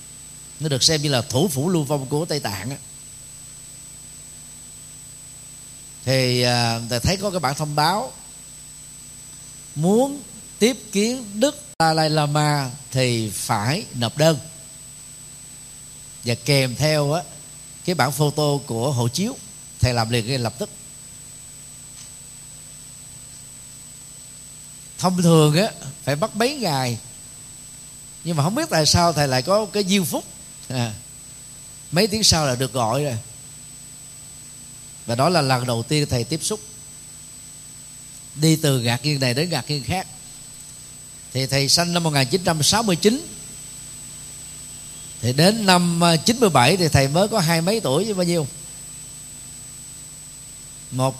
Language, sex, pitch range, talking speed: Vietnamese, male, 135-160 Hz, 130 wpm